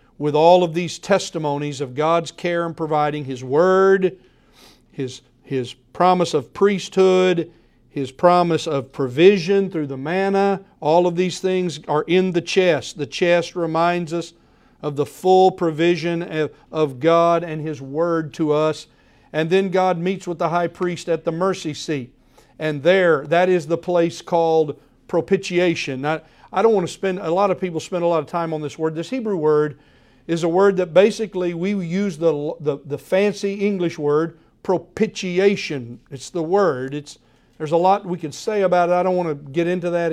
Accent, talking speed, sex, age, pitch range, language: American, 180 wpm, male, 50-69, 150-180 Hz, English